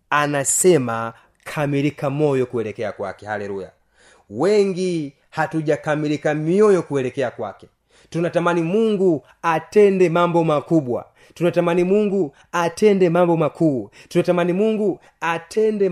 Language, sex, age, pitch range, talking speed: Swahili, male, 30-49, 150-175 Hz, 90 wpm